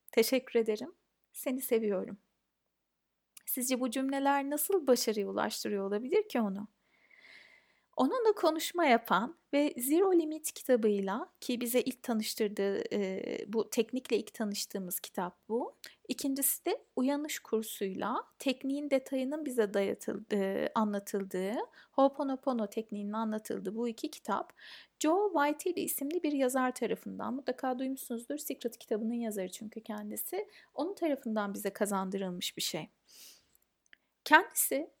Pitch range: 220-295 Hz